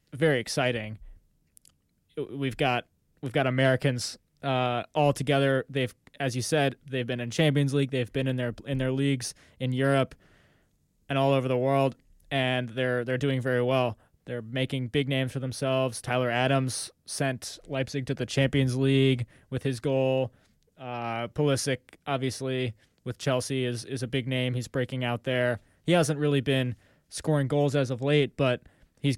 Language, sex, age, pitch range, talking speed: English, male, 20-39, 125-140 Hz, 165 wpm